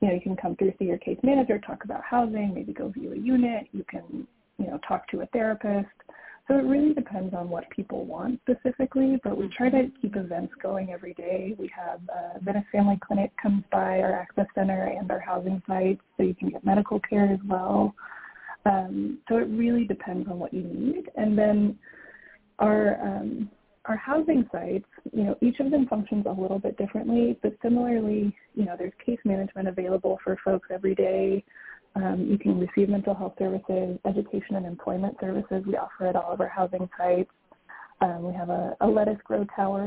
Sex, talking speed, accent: female, 200 wpm, American